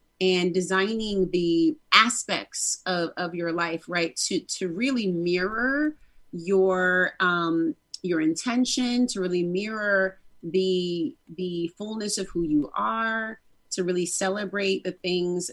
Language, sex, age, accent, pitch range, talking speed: English, female, 30-49, American, 175-210 Hz, 125 wpm